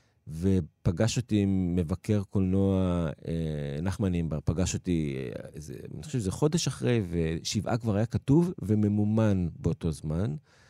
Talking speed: 125 wpm